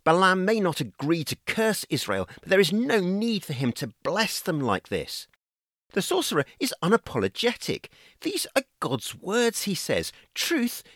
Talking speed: 165 wpm